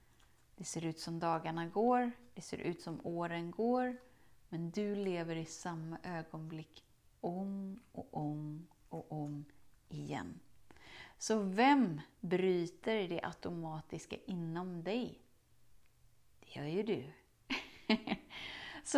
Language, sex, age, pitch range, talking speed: Swedish, female, 30-49, 185-245 Hz, 115 wpm